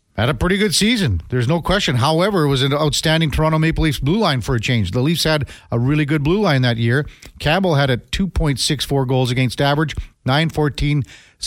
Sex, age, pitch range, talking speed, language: male, 50-69, 120-160 Hz, 205 wpm, English